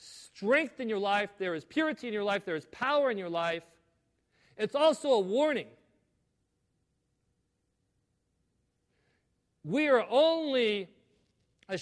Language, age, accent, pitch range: English, 40-59, American, 185-250 Hz